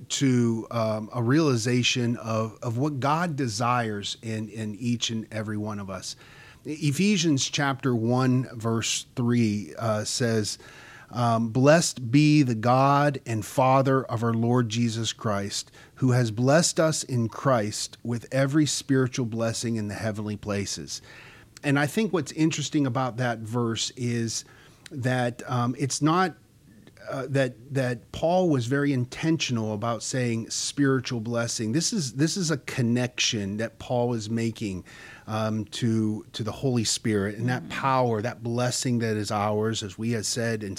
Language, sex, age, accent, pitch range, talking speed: English, male, 40-59, American, 110-135 Hz, 150 wpm